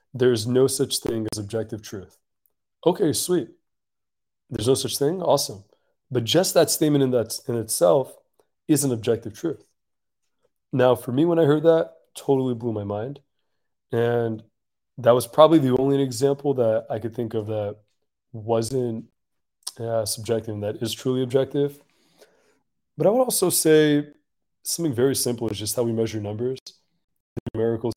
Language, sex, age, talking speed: English, male, 20-39, 160 wpm